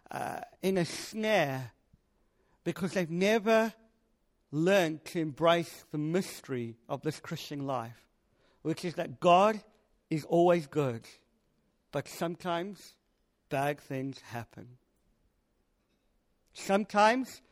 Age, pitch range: 50-69, 140-180 Hz